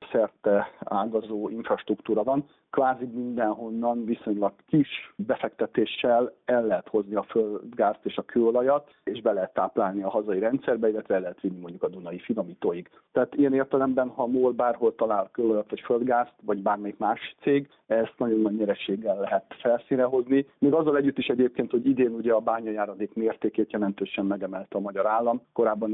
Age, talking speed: 50-69, 165 wpm